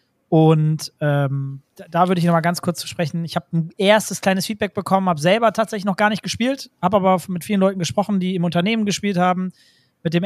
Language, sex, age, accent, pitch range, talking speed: German, male, 20-39, German, 165-195 Hz, 215 wpm